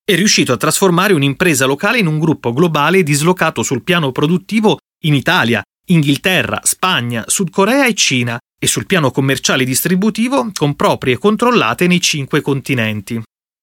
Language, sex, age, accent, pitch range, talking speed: Italian, male, 30-49, native, 125-185 Hz, 145 wpm